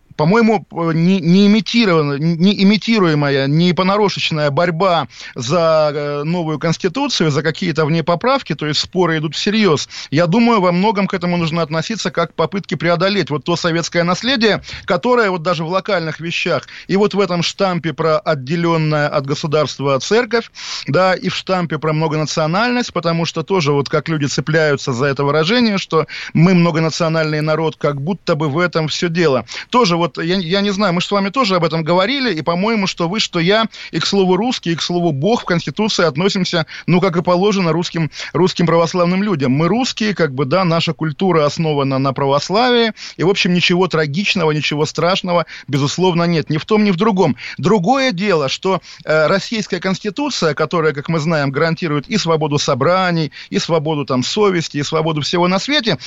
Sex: male